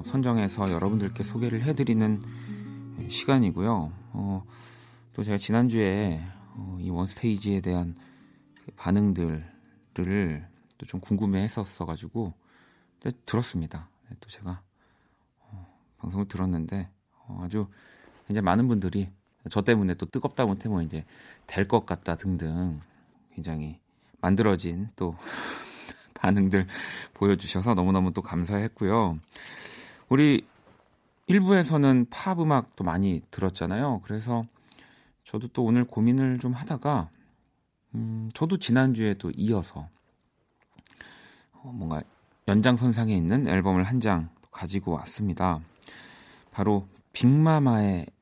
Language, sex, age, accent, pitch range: Korean, male, 40-59, native, 90-120 Hz